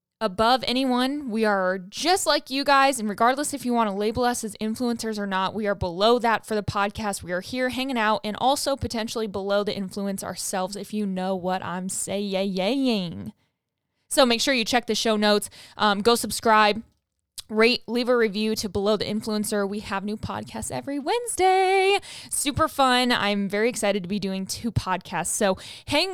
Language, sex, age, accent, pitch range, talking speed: English, female, 10-29, American, 205-260 Hz, 190 wpm